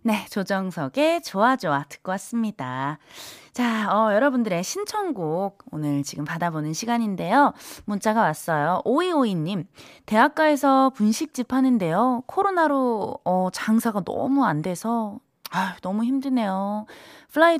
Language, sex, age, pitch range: Korean, female, 20-39, 175-245 Hz